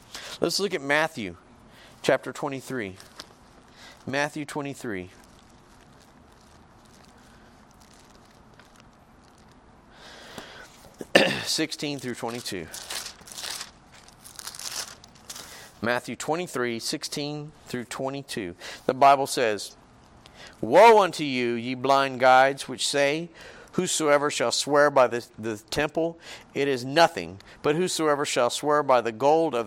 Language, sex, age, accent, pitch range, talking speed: English, male, 40-59, American, 125-165 Hz, 90 wpm